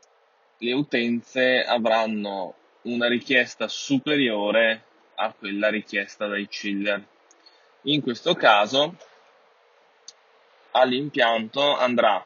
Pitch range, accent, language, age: 105-145 Hz, native, Italian, 10-29